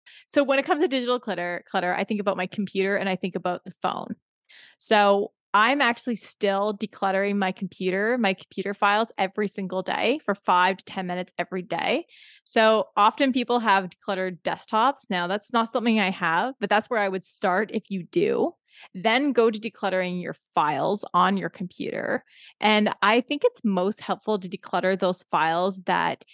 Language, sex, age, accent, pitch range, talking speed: English, female, 20-39, American, 180-215 Hz, 180 wpm